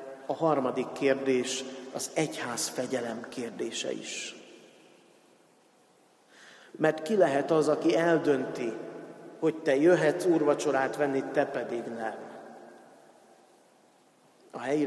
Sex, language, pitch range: male, Hungarian, 140-185 Hz